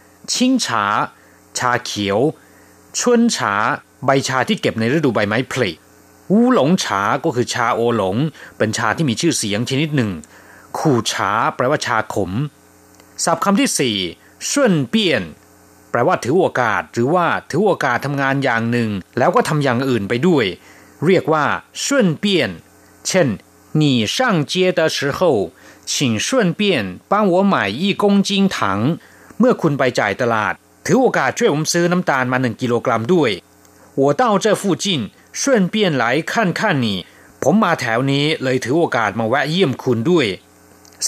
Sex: male